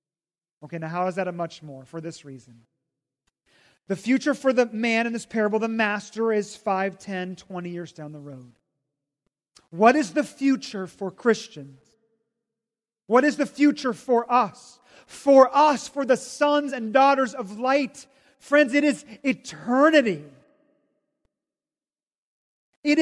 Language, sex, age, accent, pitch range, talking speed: English, male, 30-49, American, 195-275 Hz, 145 wpm